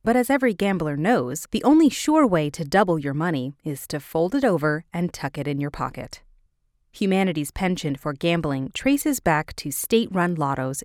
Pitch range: 145-220 Hz